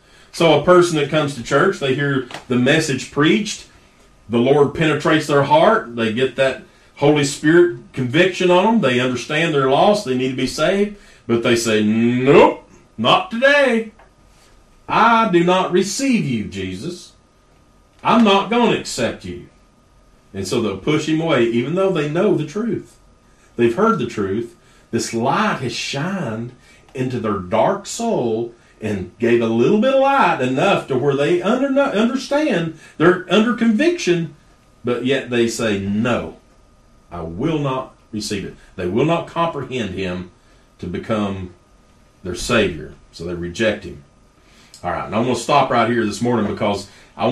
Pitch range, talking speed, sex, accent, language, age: 115-170 Hz, 160 wpm, male, American, English, 40-59